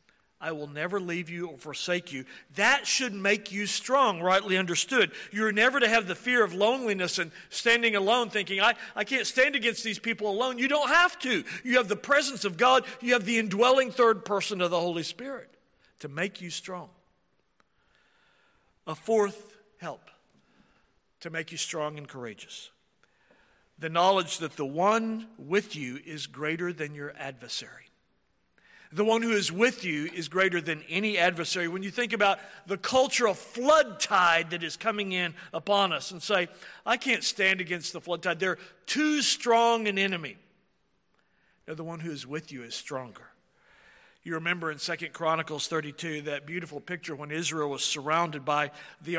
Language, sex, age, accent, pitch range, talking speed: English, male, 50-69, American, 165-220 Hz, 175 wpm